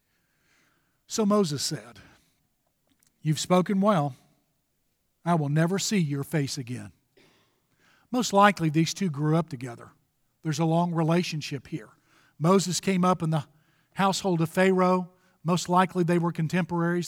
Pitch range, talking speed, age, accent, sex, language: 150-180 Hz, 135 wpm, 50-69, American, male, English